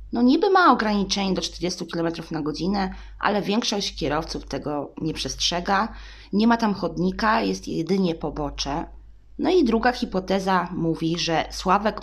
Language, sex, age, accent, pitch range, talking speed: Polish, female, 20-39, native, 160-210 Hz, 145 wpm